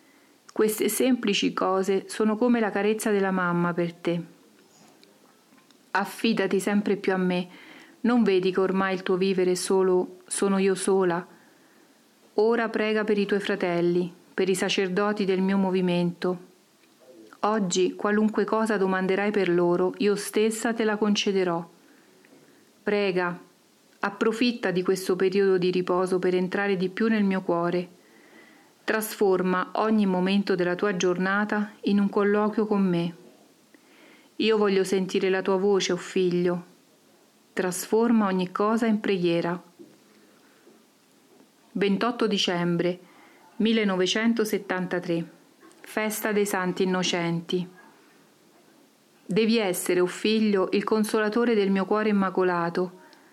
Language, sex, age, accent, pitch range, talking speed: Italian, female, 40-59, native, 185-215 Hz, 120 wpm